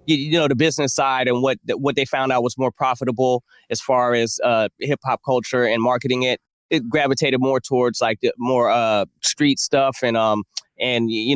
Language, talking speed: English, 200 wpm